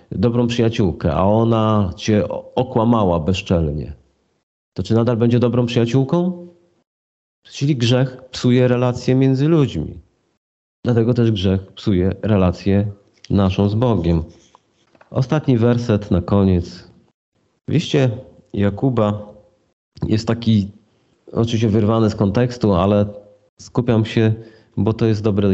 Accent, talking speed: native, 110 wpm